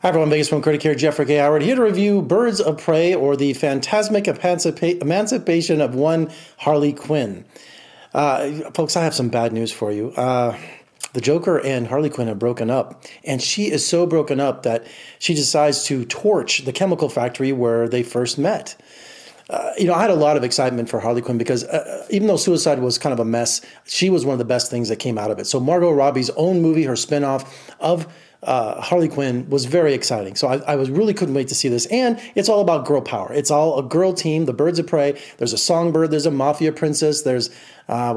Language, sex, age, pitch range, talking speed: English, male, 30-49, 125-165 Hz, 220 wpm